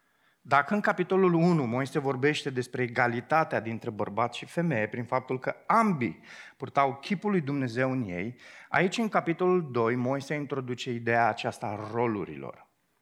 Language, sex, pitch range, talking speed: Romanian, male, 130-185 Hz, 145 wpm